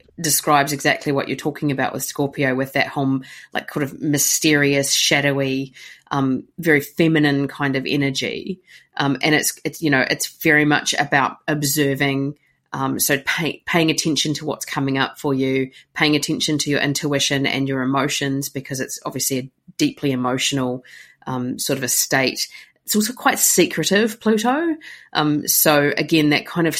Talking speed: 165 wpm